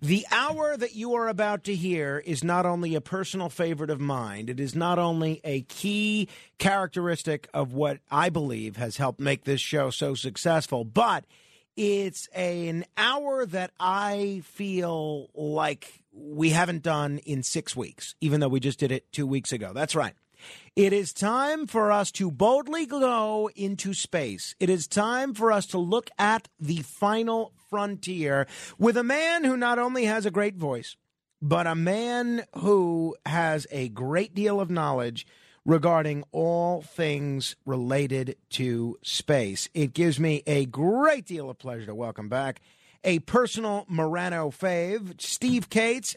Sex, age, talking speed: male, 40-59, 160 wpm